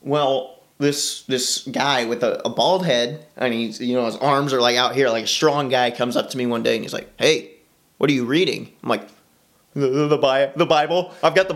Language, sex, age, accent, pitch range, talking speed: English, male, 30-49, American, 120-165 Hz, 245 wpm